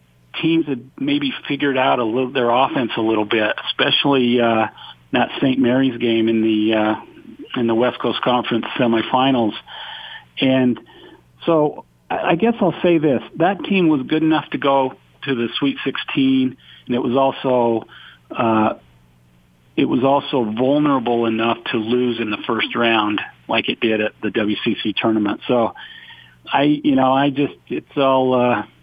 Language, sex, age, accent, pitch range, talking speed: English, male, 50-69, American, 110-135 Hz, 165 wpm